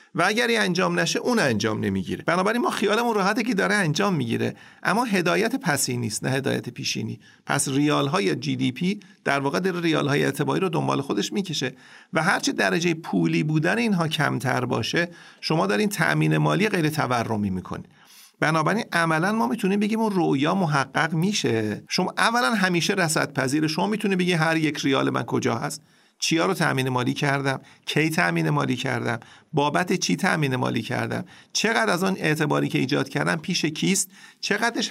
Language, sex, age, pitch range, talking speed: Persian, male, 40-59, 130-190 Hz, 170 wpm